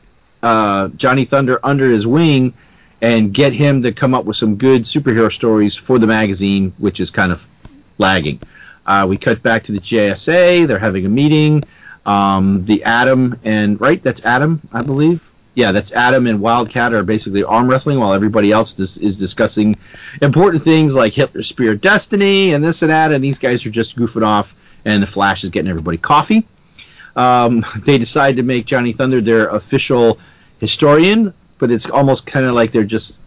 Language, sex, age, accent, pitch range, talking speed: English, male, 40-59, American, 105-145 Hz, 185 wpm